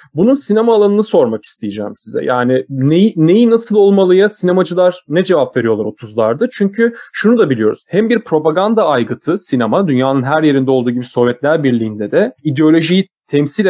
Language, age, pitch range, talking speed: Turkish, 30-49, 140-195 Hz, 155 wpm